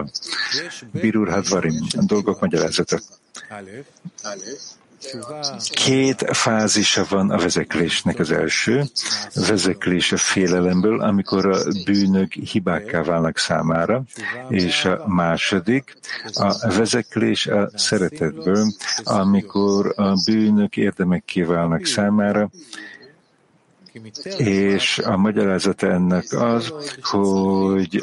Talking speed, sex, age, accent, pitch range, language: 85 wpm, male, 50-69, Czech, 95-110 Hz, English